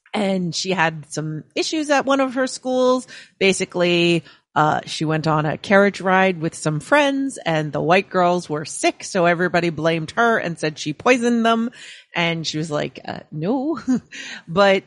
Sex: female